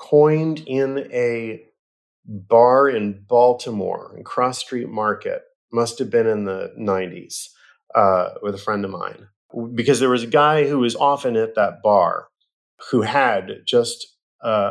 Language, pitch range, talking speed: English, 100-150 Hz, 150 wpm